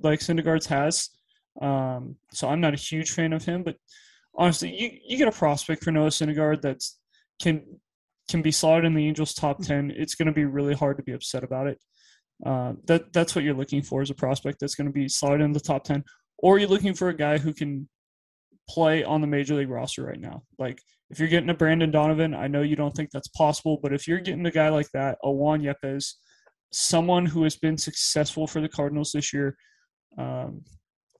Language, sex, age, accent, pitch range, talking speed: English, male, 20-39, American, 140-160 Hz, 220 wpm